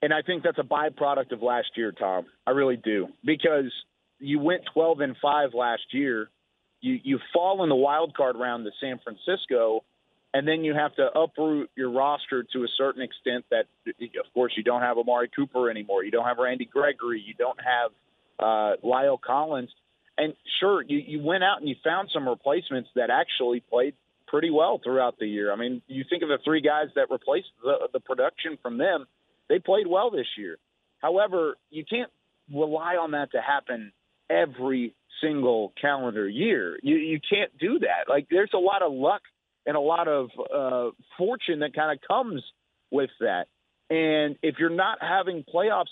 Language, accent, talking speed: English, American, 190 wpm